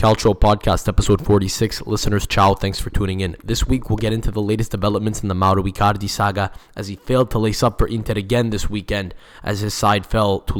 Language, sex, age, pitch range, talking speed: English, male, 10-29, 100-115 Hz, 220 wpm